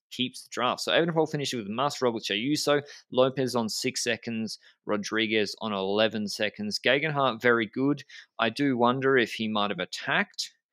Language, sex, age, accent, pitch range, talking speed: English, male, 20-39, Australian, 105-135 Hz, 175 wpm